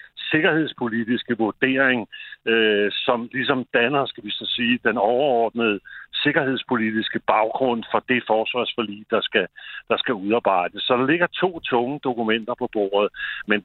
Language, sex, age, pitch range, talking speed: Danish, male, 60-79, 110-140 Hz, 135 wpm